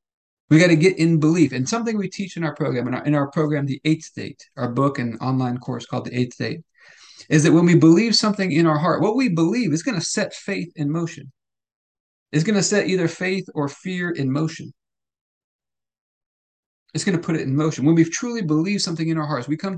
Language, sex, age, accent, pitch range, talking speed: English, male, 40-59, American, 130-175 Hz, 230 wpm